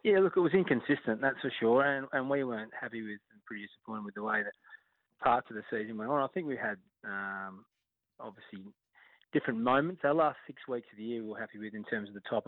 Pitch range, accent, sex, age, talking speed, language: 105-120 Hz, Australian, male, 20-39, 245 wpm, English